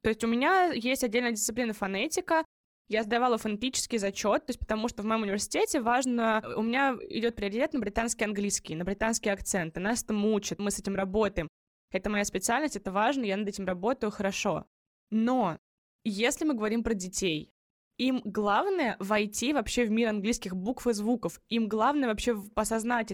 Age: 20-39